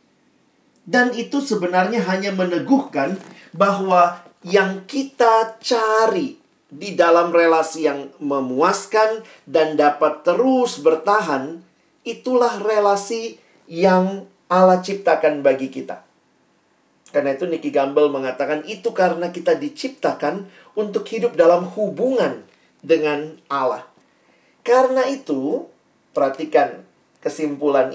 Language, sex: Indonesian, male